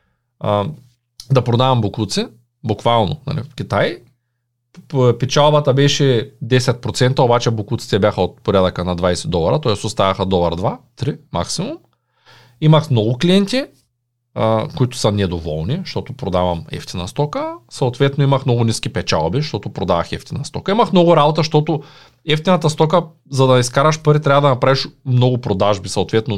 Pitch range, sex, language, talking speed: 115-150 Hz, male, Bulgarian, 130 wpm